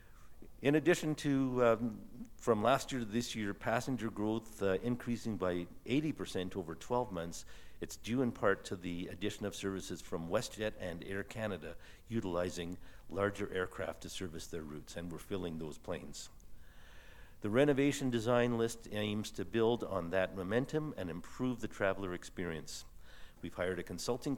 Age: 50-69